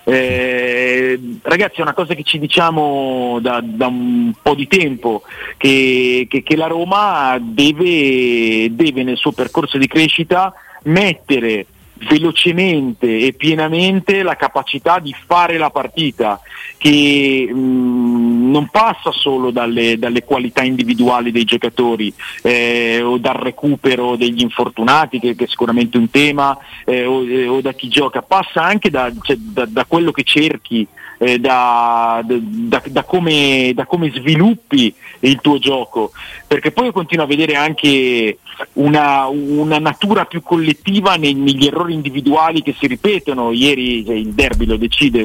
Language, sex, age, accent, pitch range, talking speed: Italian, male, 40-59, native, 125-160 Hz, 145 wpm